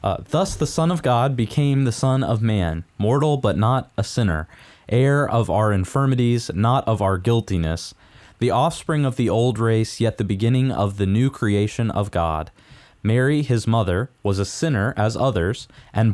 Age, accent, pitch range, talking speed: 20-39, American, 95-135 Hz, 180 wpm